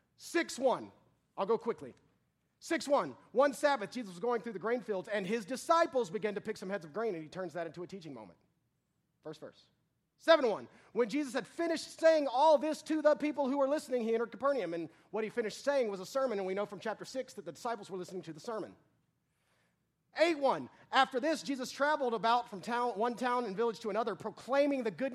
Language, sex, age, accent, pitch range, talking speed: English, male, 30-49, American, 220-280 Hz, 215 wpm